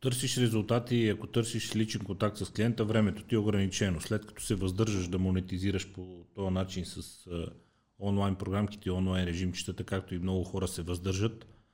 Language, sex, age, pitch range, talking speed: Bulgarian, male, 30-49, 95-115 Hz, 170 wpm